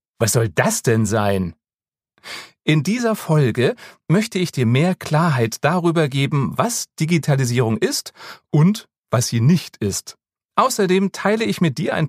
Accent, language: German, German